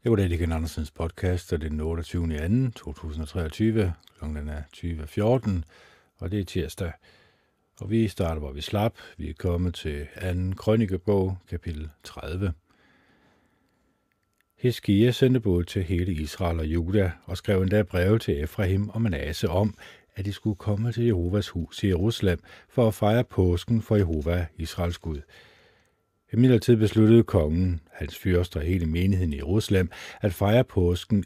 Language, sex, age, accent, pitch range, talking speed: Danish, male, 50-69, native, 85-105 Hz, 155 wpm